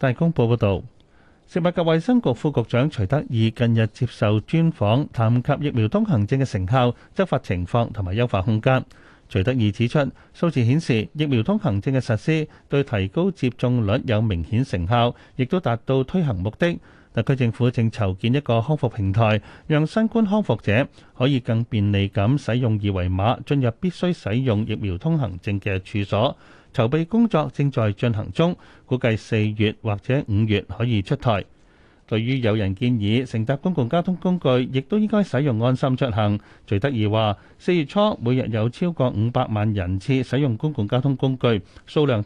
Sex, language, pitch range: male, Chinese, 105-140 Hz